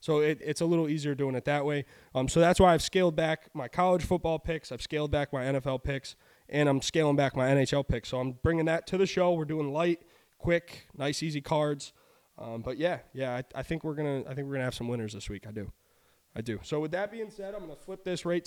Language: English